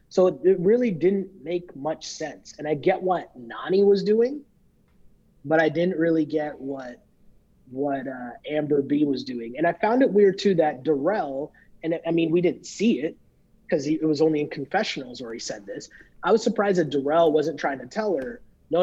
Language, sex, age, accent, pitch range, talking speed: English, male, 30-49, American, 150-190 Hz, 200 wpm